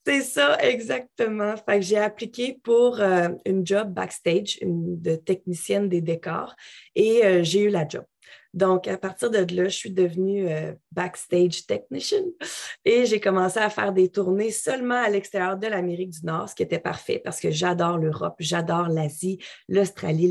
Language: French